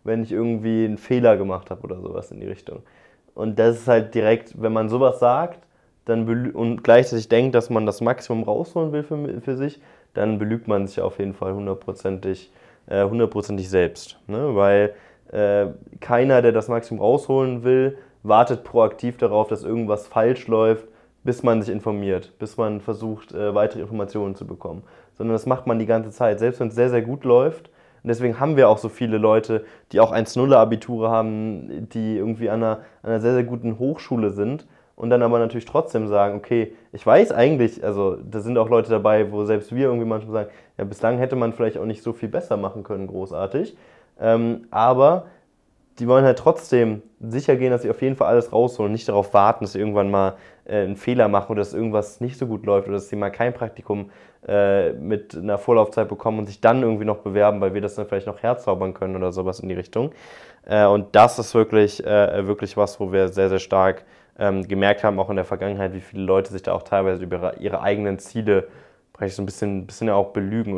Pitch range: 100-115 Hz